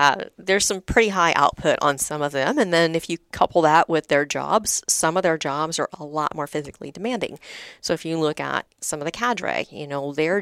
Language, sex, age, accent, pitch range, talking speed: English, female, 40-59, American, 145-185 Hz, 235 wpm